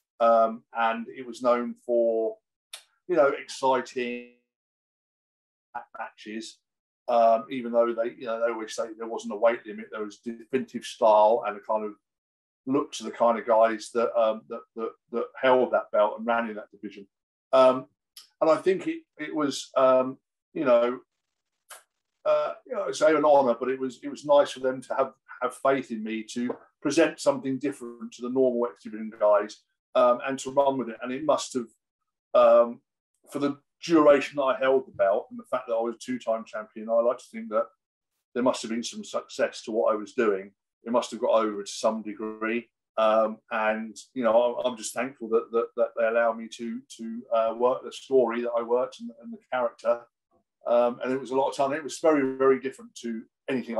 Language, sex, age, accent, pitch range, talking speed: Spanish, male, 50-69, British, 115-135 Hz, 205 wpm